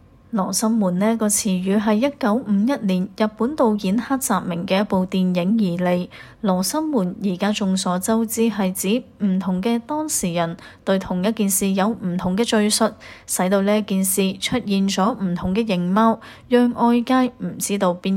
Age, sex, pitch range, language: 30-49, female, 185-225 Hz, Chinese